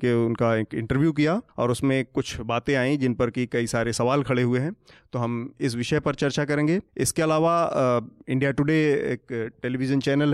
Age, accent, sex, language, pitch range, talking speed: 30-49, native, male, Hindi, 125-145 Hz, 195 wpm